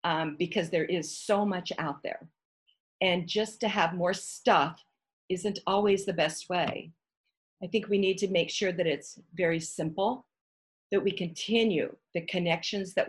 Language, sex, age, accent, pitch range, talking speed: English, female, 50-69, American, 170-210 Hz, 165 wpm